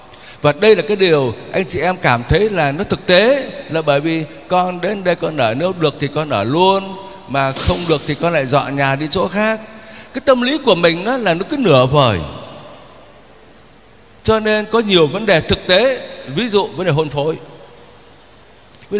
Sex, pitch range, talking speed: male, 140-200 Hz, 200 wpm